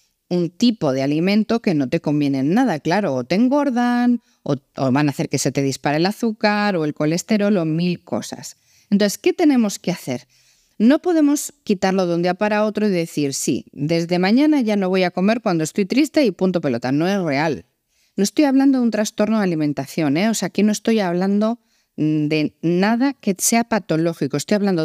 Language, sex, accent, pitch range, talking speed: Spanish, female, Spanish, 155-240 Hz, 205 wpm